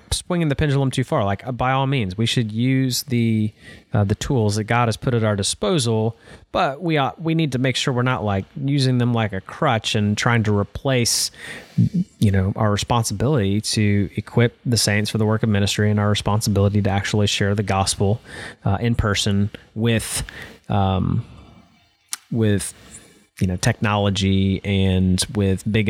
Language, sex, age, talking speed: English, male, 30-49, 180 wpm